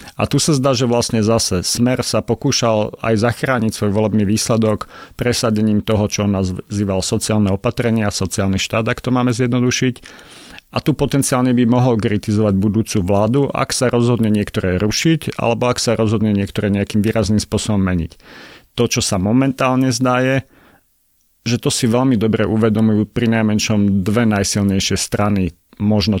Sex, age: male, 40-59